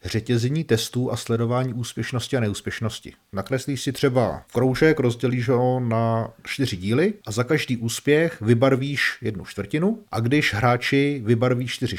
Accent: native